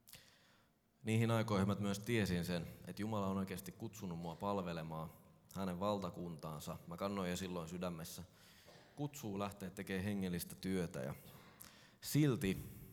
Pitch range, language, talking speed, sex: 90-115 Hz, Finnish, 120 wpm, male